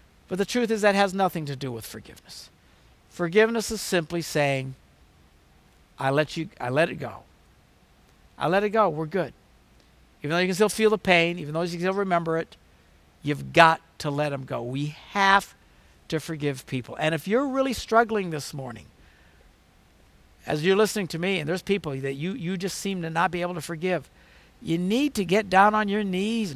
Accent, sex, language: American, male, English